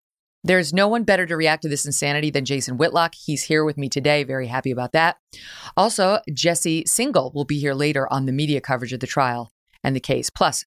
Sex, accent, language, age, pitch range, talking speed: female, American, English, 30-49, 140-185 Hz, 225 wpm